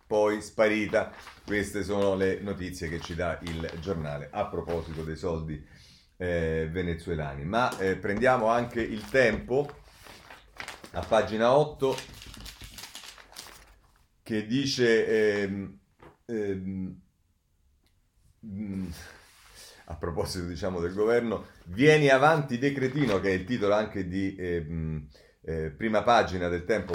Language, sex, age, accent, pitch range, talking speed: Italian, male, 40-59, native, 85-110 Hz, 115 wpm